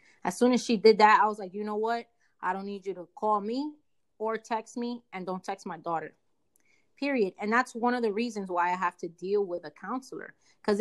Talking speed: 240 wpm